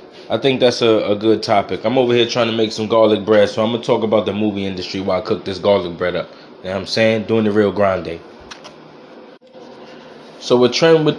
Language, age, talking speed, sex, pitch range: English, 20-39, 240 wpm, male, 95-115 Hz